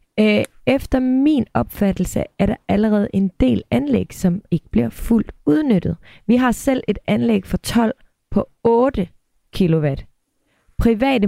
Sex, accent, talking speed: female, native, 140 wpm